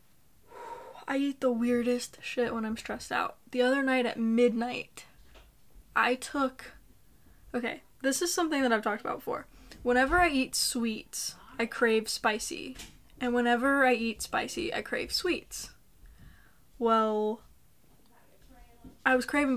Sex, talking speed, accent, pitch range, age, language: female, 135 wpm, American, 225-265 Hz, 10-29, English